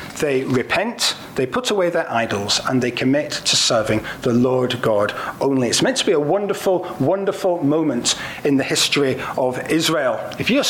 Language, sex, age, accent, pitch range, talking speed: English, male, 40-59, British, 130-175 Hz, 175 wpm